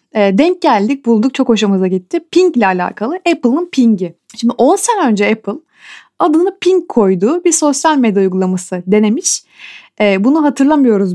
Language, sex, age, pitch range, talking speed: Turkish, female, 30-49, 210-305 Hz, 145 wpm